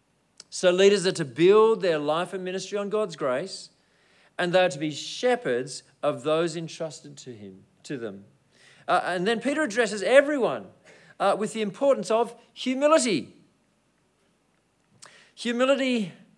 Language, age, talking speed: English, 40-59, 140 wpm